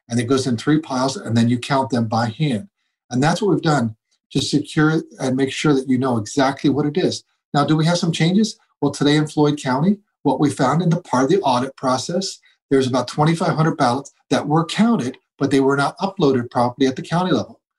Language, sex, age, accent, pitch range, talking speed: English, male, 40-59, American, 130-165 Hz, 235 wpm